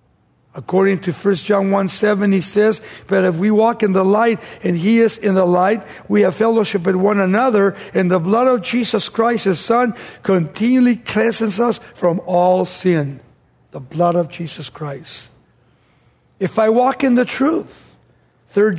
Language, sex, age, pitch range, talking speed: English, male, 50-69, 175-225 Hz, 170 wpm